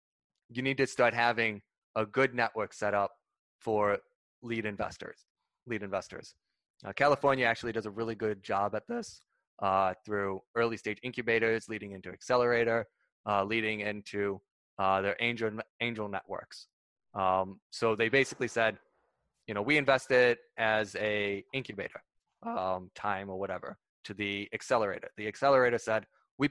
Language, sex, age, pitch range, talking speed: English, male, 20-39, 105-125 Hz, 145 wpm